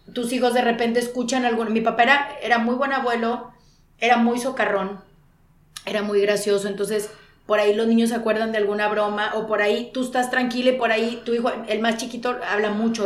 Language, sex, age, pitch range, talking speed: Spanish, female, 30-49, 200-240 Hz, 205 wpm